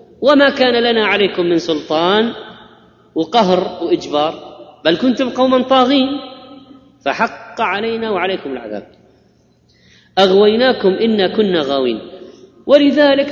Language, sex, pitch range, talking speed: Arabic, female, 165-235 Hz, 95 wpm